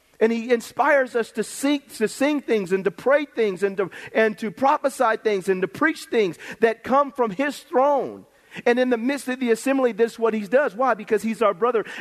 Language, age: English, 40-59